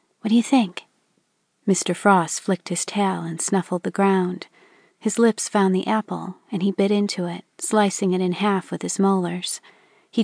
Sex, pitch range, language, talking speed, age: female, 180-210 Hz, English, 180 wpm, 40-59